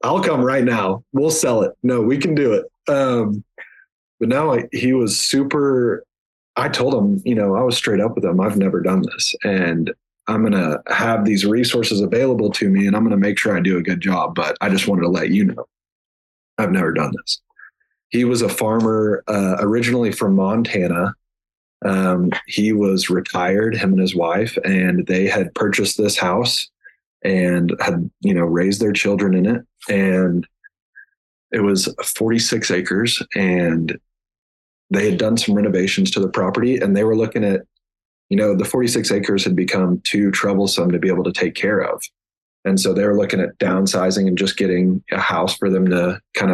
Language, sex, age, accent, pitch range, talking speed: English, male, 20-39, American, 95-115 Hz, 190 wpm